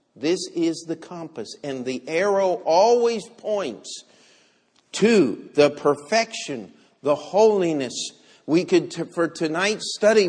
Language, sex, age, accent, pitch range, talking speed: English, male, 50-69, American, 115-185 Hz, 115 wpm